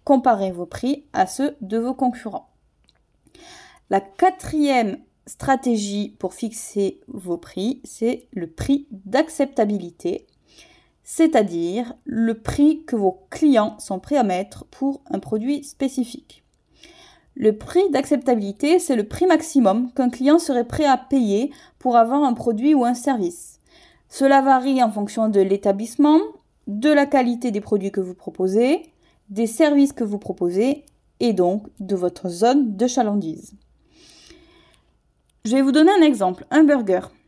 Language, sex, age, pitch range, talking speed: French, female, 20-39, 215-285 Hz, 140 wpm